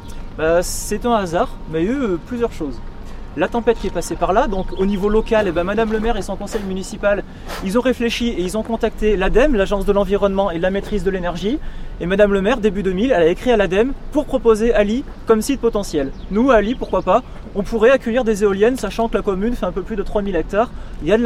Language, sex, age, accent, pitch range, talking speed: French, male, 20-39, French, 175-225 Hz, 250 wpm